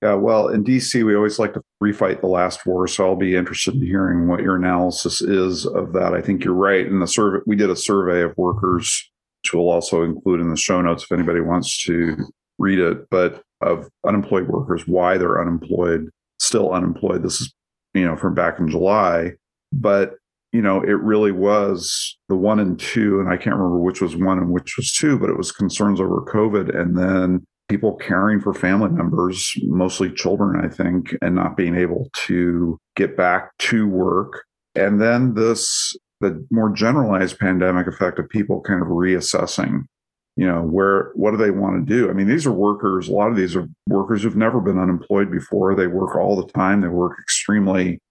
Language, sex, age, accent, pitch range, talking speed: English, male, 40-59, American, 90-100 Hz, 200 wpm